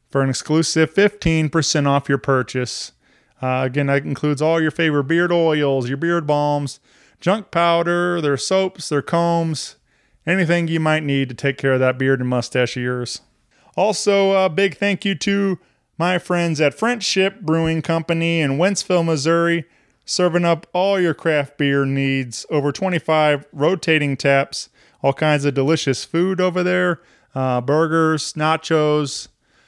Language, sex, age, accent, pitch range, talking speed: English, male, 20-39, American, 135-170 Hz, 150 wpm